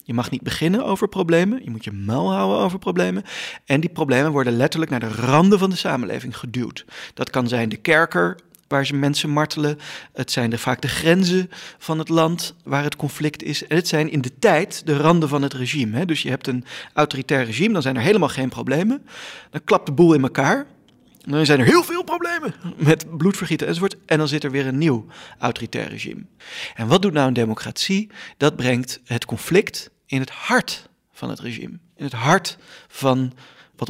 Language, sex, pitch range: Dutch, male, 130-170 Hz